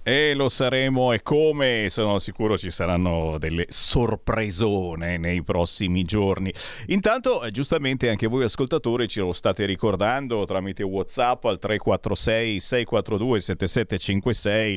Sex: male